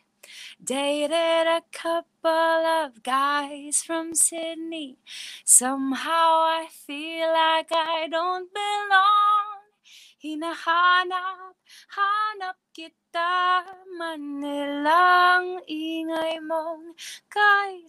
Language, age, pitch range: English, 20-39, 270-330 Hz